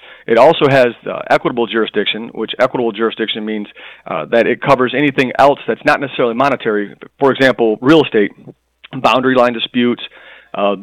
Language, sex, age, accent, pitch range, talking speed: English, male, 40-59, American, 115-135 Hz, 155 wpm